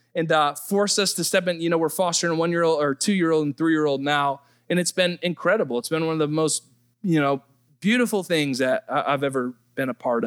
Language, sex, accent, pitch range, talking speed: English, male, American, 120-170 Hz, 220 wpm